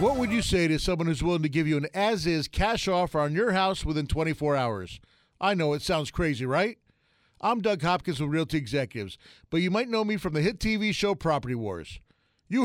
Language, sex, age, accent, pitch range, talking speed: English, male, 40-59, American, 160-220 Hz, 220 wpm